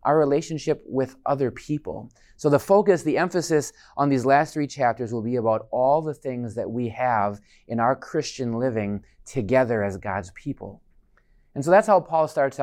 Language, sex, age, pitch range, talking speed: English, male, 30-49, 115-145 Hz, 180 wpm